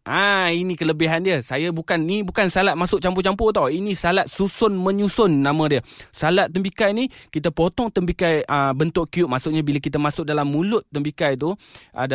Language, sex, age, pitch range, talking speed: Malay, male, 20-39, 125-160 Hz, 185 wpm